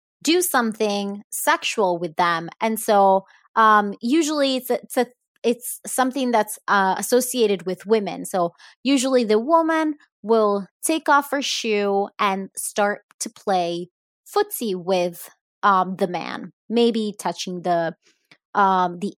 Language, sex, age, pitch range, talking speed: English, female, 20-39, 200-280 Hz, 135 wpm